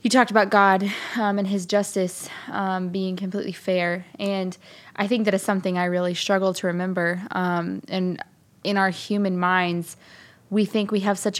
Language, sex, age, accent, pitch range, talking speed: English, female, 20-39, American, 180-210 Hz, 180 wpm